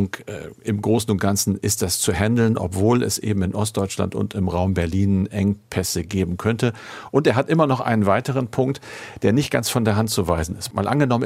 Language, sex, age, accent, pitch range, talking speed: German, male, 50-69, German, 95-115 Hz, 210 wpm